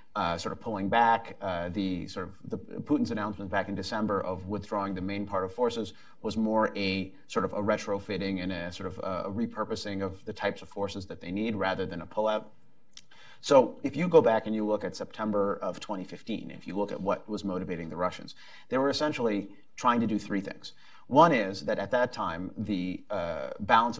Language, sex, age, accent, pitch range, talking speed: English, male, 30-49, American, 95-110 Hz, 215 wpm